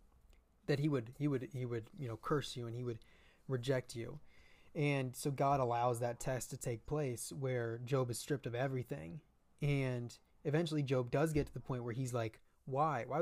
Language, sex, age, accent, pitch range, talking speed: English, male, 20-39, American, 125-150 Hz, 200 wpm